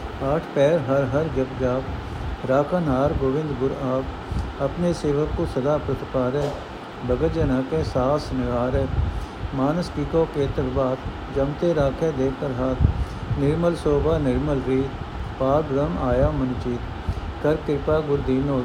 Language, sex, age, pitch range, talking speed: Punjabi, male, 60-79, 125-150 Hz, 125 wpm